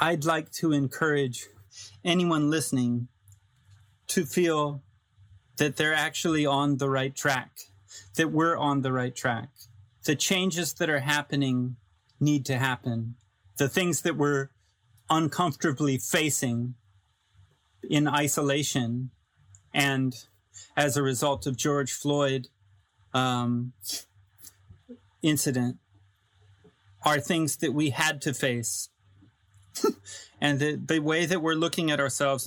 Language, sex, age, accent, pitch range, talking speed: English, male, 30-49, American, 105-150 Hz, 115 wpm